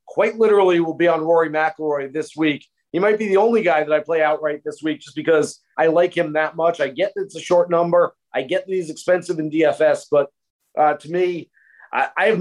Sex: male